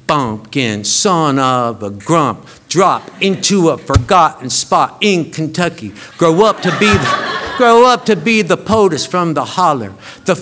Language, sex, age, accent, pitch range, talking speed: English, male, 50-69, American, 130-180 Hz, 155 wpm